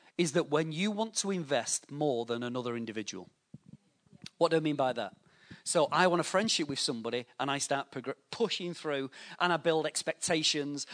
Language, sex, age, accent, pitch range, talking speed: English, male, 40-59, British, 140-185 Hz, 180 wpm